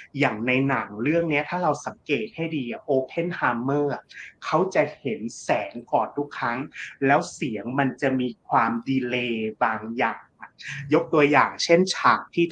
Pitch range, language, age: 125-160 Hz, Thai, 30-49